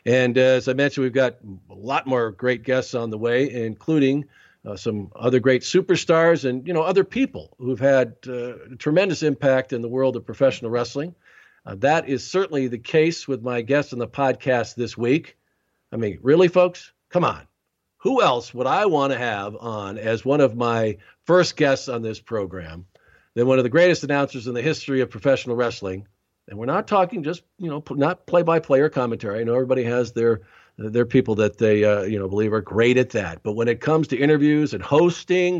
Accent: American